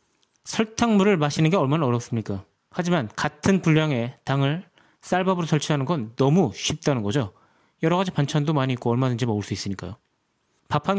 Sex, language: male, Korean